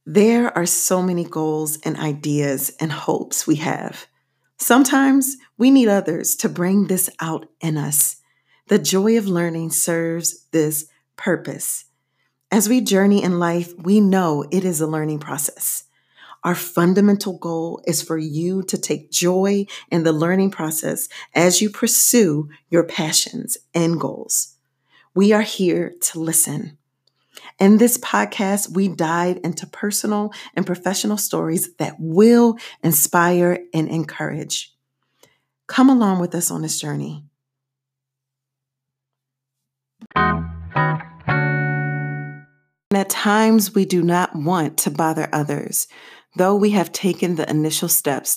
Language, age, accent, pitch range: English, 40-59, American, 155-195 Hz